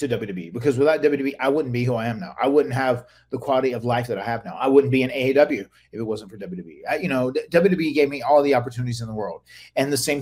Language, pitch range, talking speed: English, 120-145 Hz, 280 wpm